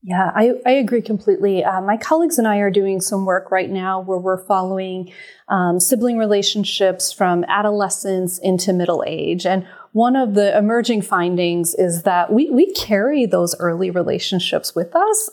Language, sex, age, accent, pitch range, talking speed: English, female, 30-49, American, 185-245 Hz, 170 wpm